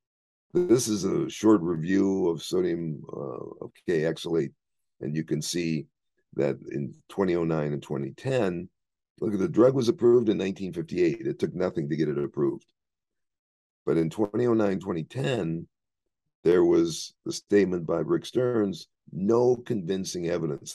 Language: English